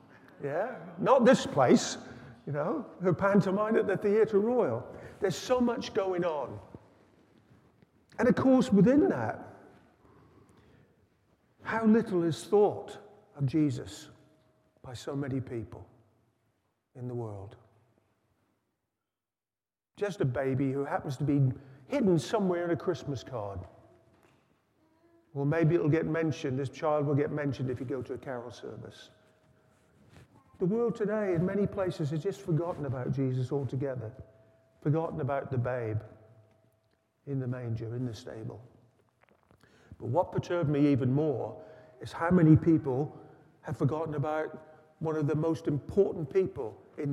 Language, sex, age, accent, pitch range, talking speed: English, male, 50-69, British, 125-175 Hz, 140 wpm